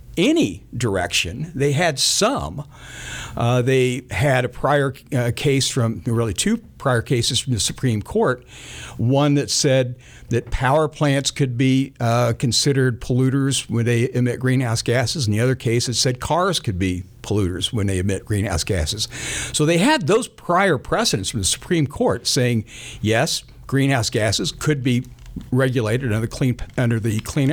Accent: American